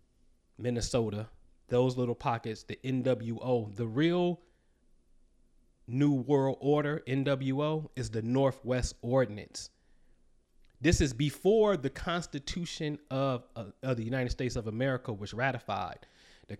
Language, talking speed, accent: English, 115 wpm, American